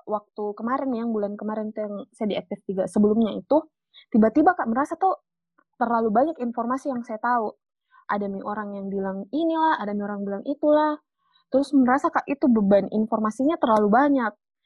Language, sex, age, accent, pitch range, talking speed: Indonesian, female, 20-39, native, 215-295 Hz, 165 wpm